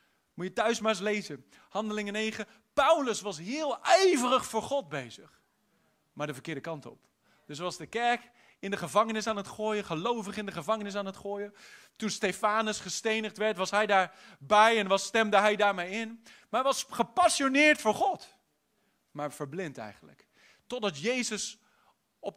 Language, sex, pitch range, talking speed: English, male, 170-230 Hz, 170 wpm